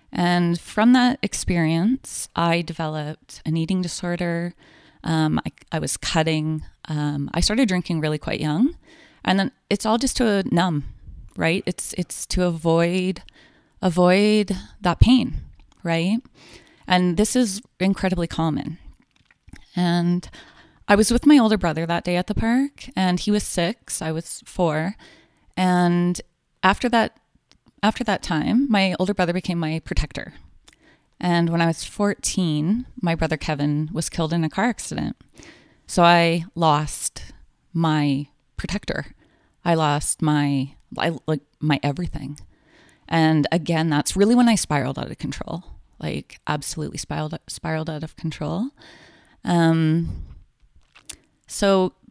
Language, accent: English, American